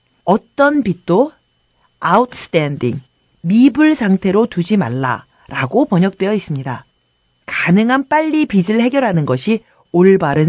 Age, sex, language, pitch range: 40-59, female, Korean, 165-240 Hz